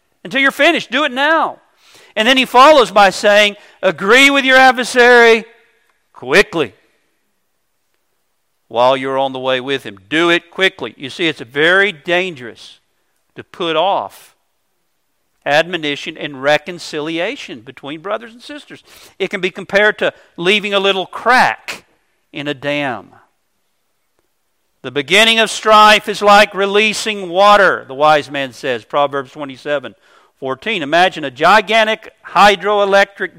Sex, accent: male, American